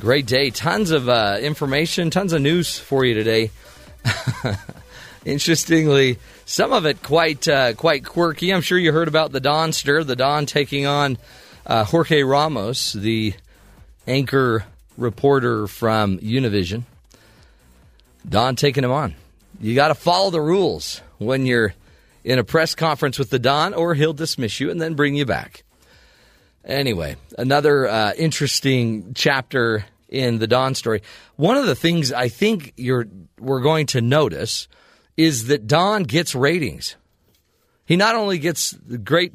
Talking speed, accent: 150 wpm, American